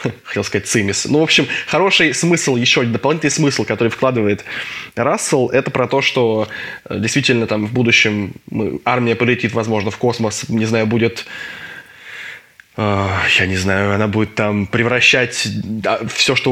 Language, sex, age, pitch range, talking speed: Russian, male, 20-39, 110-135 Hz, 145 wpm